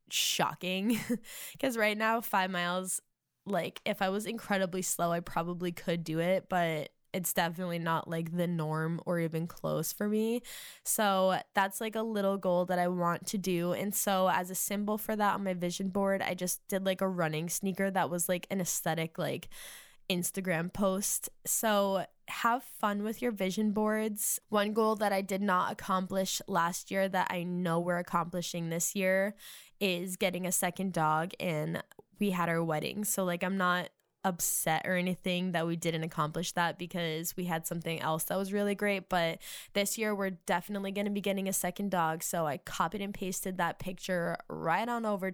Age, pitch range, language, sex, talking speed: 10-29, 170-200 Hz, English, female, 190 wpm